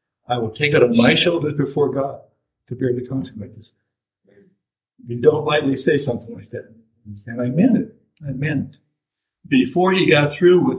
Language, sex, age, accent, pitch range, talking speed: English, male, 60-79, American, 120-165 Hz, 190 wpm